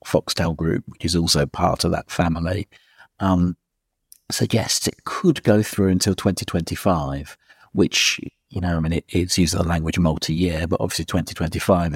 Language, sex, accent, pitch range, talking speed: English, male, British, 80-95 Hz, 150 wpm